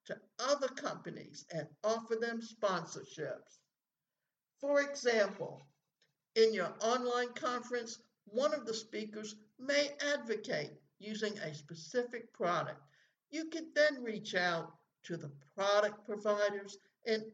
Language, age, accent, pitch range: English, 60-79, American, 205-250 Hz